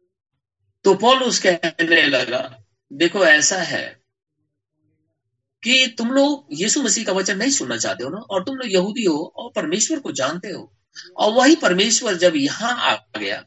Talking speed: 150 wpm